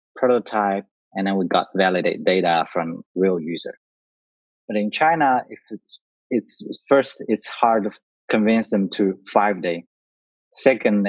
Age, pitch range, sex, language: 30-49, 95-120 Hz, male, English